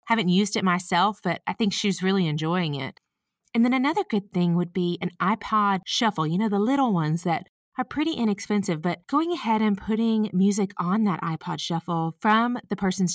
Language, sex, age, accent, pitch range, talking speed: English, female, 30-49, American, 175-215 Hz, 195 wpm